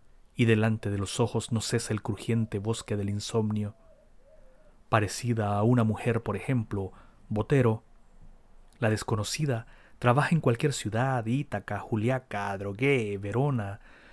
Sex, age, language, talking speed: male, 40-59, Spanish, 125 wpm